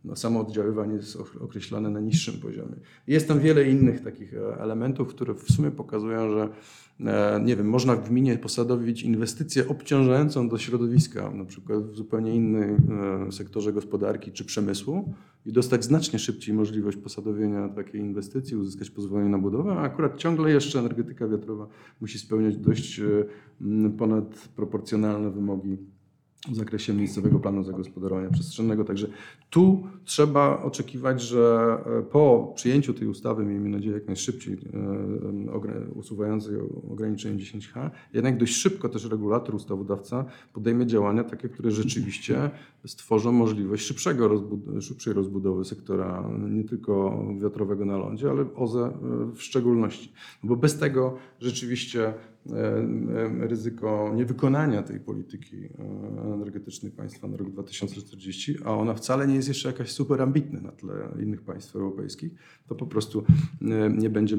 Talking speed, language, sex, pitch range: 130 wpm, Polish, male, 105-130 Hz